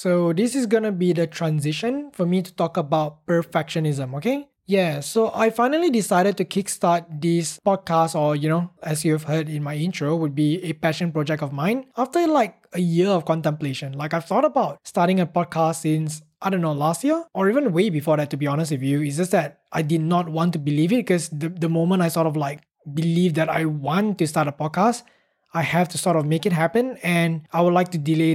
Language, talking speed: English, 230 wpm